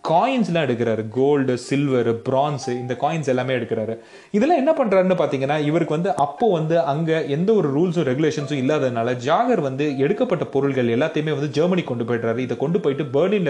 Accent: native